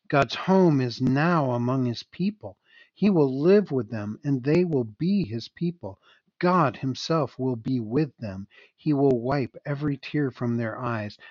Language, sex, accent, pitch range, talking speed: English, male, American, 115-145 Hz, 170 wpm